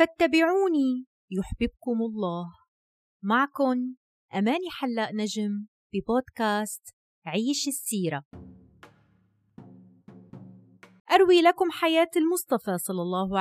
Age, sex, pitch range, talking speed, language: 30-49, female, 180-280 Hz, 70 wpm, Arabic